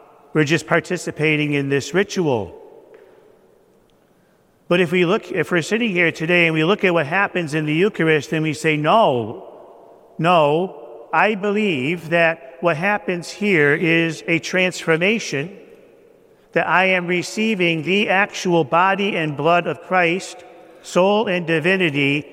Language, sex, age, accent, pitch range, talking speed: English, male, 50-69, American, 155-185 Hz, 140 wpm